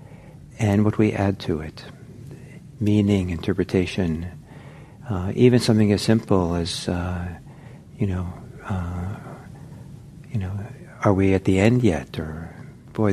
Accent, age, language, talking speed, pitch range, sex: American, 60-79, English, 120 wpm, 95-125 Hz, male